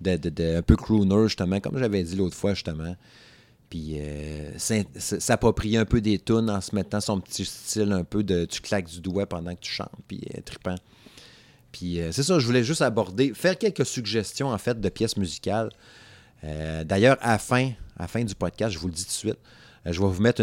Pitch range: 95-120 Hz